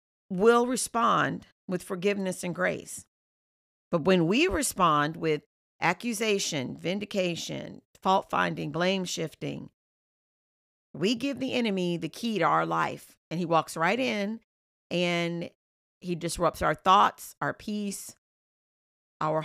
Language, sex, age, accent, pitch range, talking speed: English, female, 40-59, American, 165-210 Hz, 115 wpm